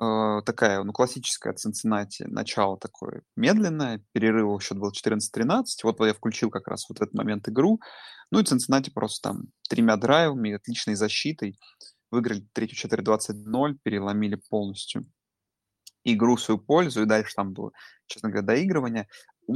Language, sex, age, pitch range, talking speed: Russian, male, 20-39, 105-130 Hz, 140 wpm